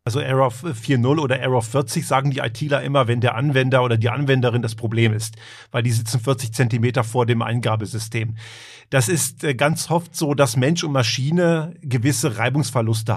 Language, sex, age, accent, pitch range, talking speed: German, male, 40-59, German, 120-145 Hz, 175 wpm